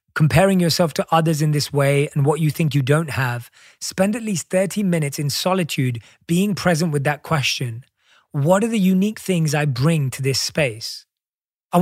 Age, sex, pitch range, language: 30-49, male, 150-200 Hz, English